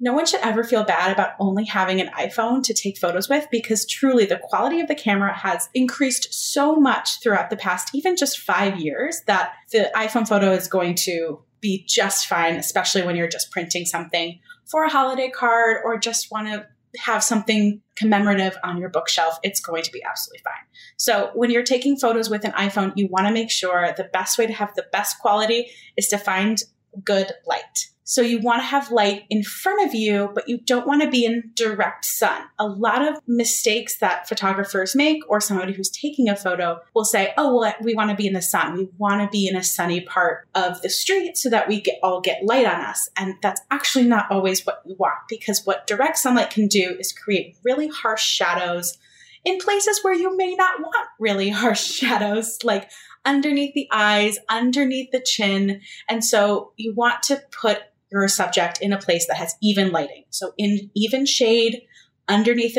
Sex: female